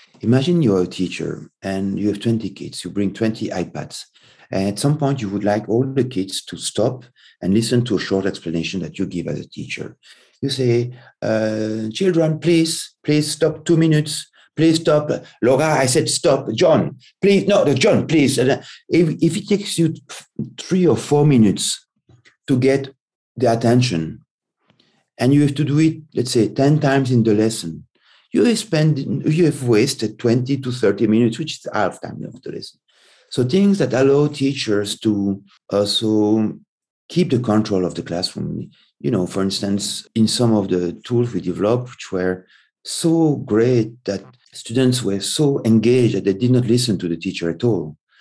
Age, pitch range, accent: 50-69, 100-140 Hz, French